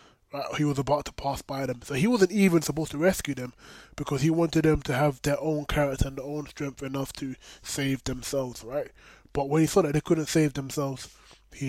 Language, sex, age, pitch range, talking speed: English, male, 20-39, 135-160 Hz, 220 wpm